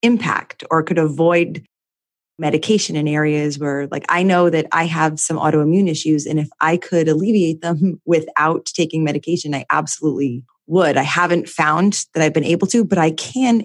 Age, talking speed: 20-39, 175 wpm